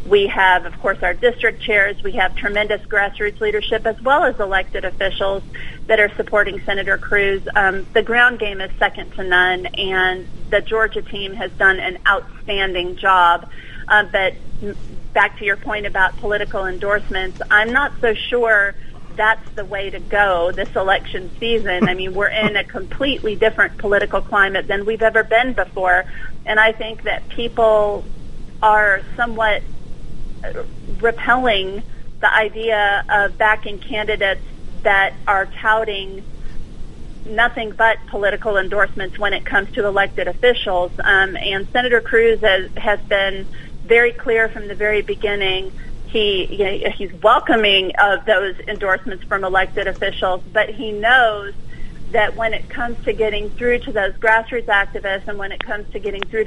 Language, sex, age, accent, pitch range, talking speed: English, female, 40-59, American, 195-220 Hz, 155 wpm